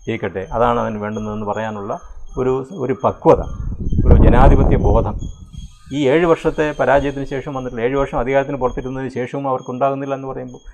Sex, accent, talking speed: male, native, 135 wpm